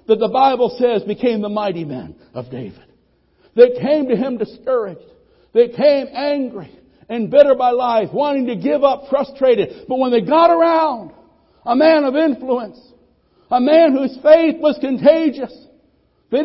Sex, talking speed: male, 155 wpm